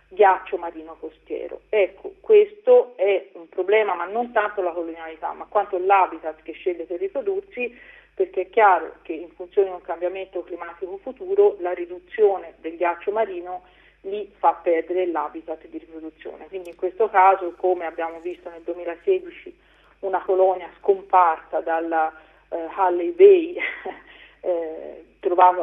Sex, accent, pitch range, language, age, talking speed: female, native, 170-225 Hz, Italian, 40-59, 140 wpm